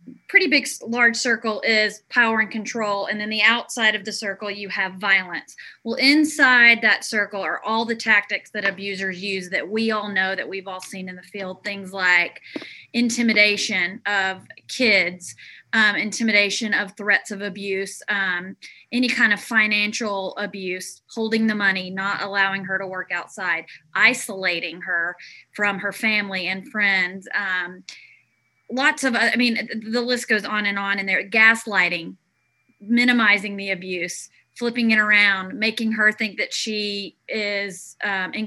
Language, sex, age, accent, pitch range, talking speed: English, female, 20-39, American, 195-230 Hz, 160 wpm